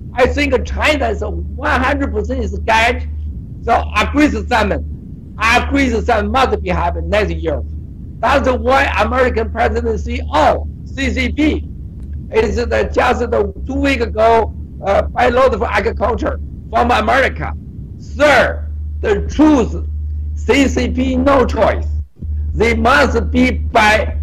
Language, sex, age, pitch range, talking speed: English, male, 60-79, 75-85 Hz, 120 wpm